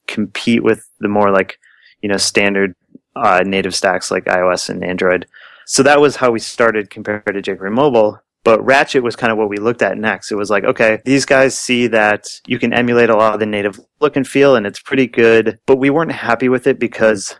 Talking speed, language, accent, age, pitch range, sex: 225 wpm, English, American, 30-49, 105-125 Hz, male